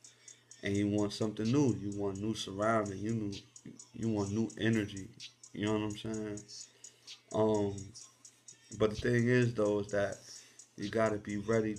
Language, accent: English, American